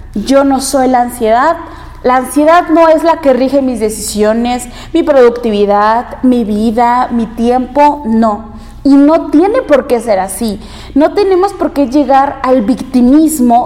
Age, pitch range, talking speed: 20-39, 230-275 Hz, 155 wpm